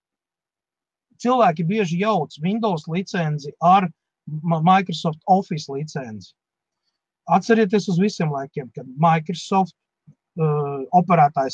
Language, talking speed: English, 90 wpm